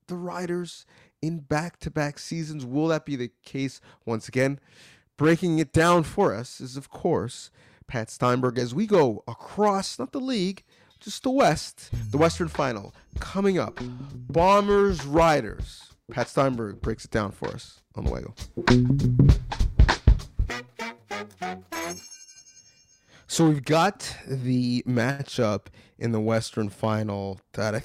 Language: English